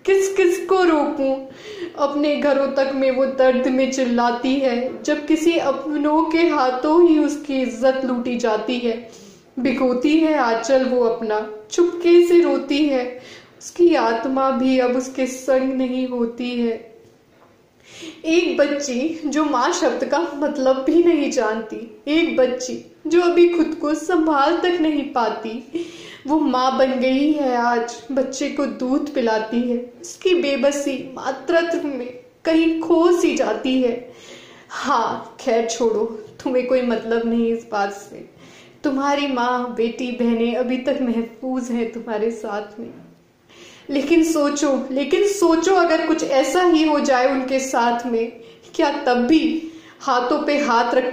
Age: 20-39